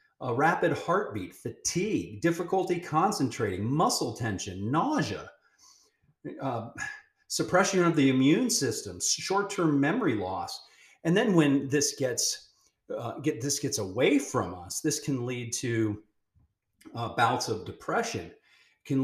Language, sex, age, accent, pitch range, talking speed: English, male, 40-59, American, 110-145 Hz, 125 wpm